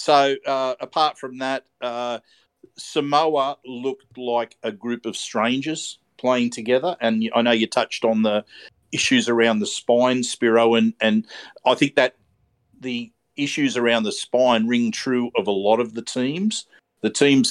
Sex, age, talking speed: male, 50-69, 160 wpm